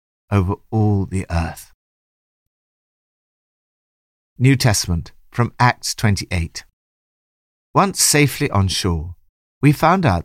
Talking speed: 95 wpm